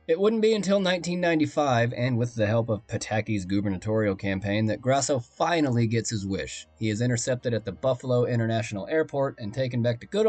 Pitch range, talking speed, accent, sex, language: 110-155 Hz, 185 wpm, American, male, English